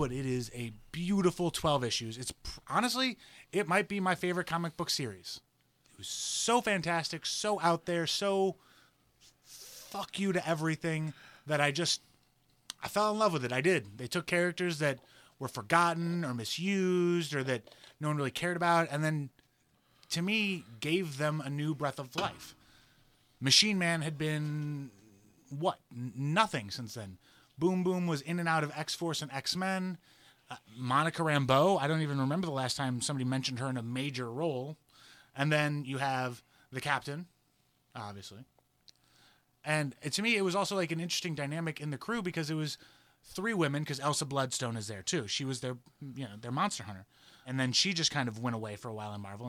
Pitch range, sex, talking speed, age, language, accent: 130-170 Hz, male, 185 wpm, 30-49, English, American